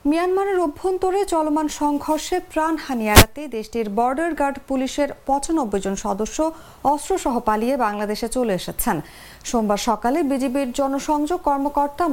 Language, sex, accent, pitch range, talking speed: English, female, Indian, 230-305 Hz, 120 wpm